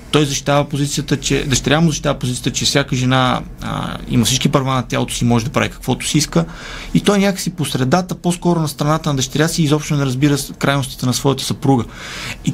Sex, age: male, 30-49